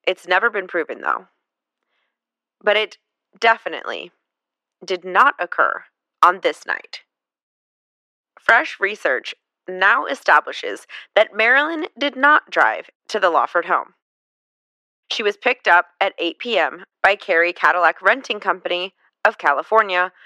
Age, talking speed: 30-49, 120 wpm